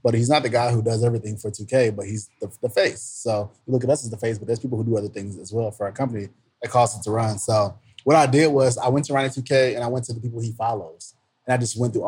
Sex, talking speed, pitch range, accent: male, 320 wpm, 110-135 Hz, American